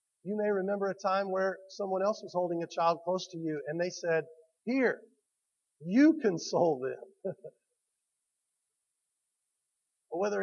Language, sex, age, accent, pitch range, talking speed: English, male, 40-59, American, 160-205 Hz, 130 wpm